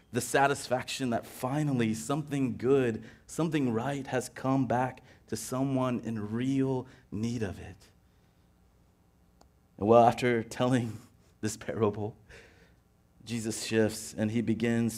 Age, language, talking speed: 30-49, English, 110 wpm